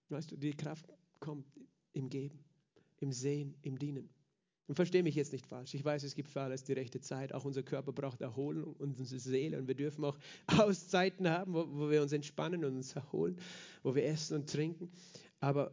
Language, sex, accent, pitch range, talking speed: German, male, German, 140-165 Hz, 200 wpm